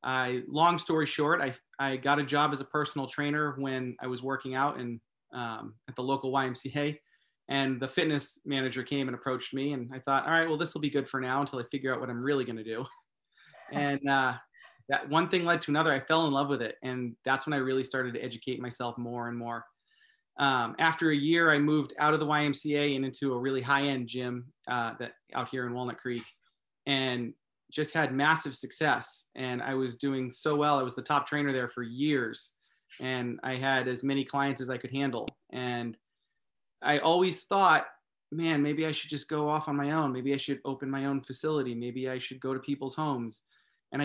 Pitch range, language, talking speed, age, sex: 130-150 Hz, English, 220 wpm, 30-49, male